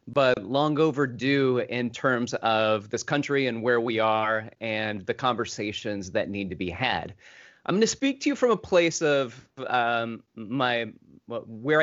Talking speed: 165 wpm